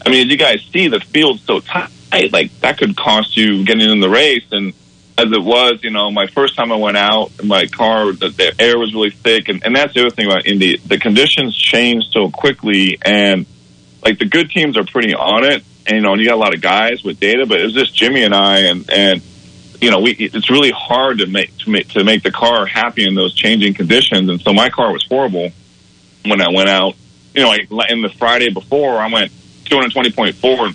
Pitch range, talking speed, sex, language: 95-115 Hz, 240 wpm, male, English